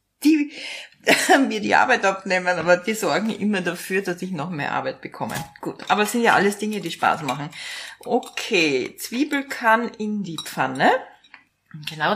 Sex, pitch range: female, 175-250 Hz